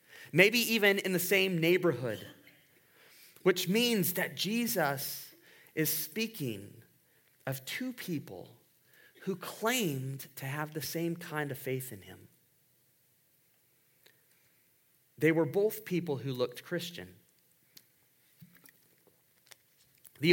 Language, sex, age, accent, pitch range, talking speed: English, male, 30-49, American, 130-185 Hz, 100 wpm